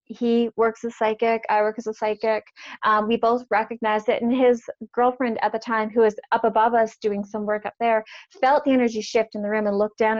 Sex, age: female, 20-39